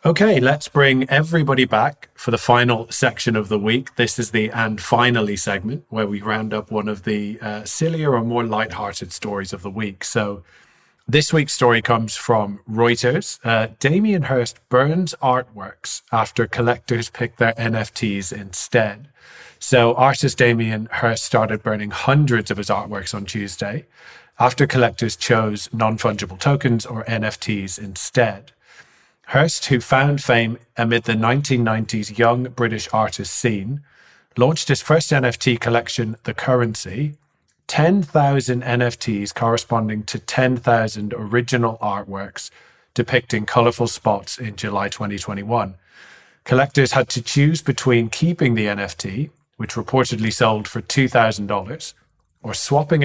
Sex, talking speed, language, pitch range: male, 135 wpm, English, 110-130 Hz